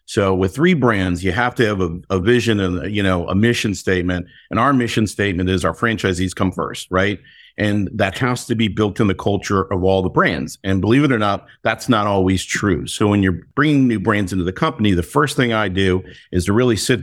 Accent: American